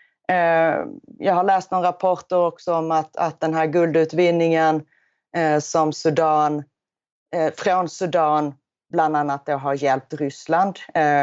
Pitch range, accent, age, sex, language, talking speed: 150-190 Hz, native, 30-49, female, Swedish, 110 wpm